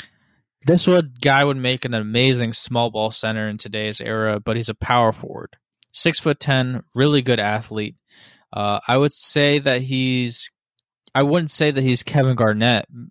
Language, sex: English, male